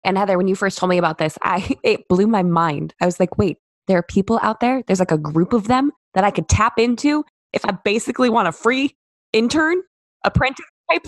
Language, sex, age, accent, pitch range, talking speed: English, female, 20-39, American, 165-235 Hz, 235 wpm